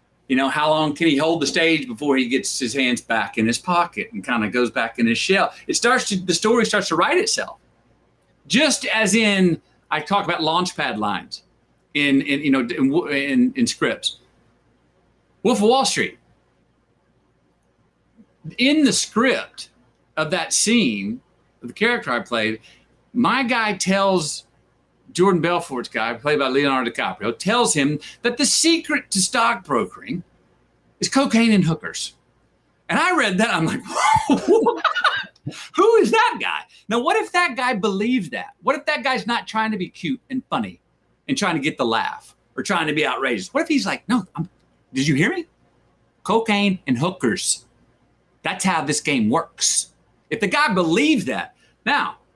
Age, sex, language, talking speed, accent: 50-69, male, Italian, 175 wpm, American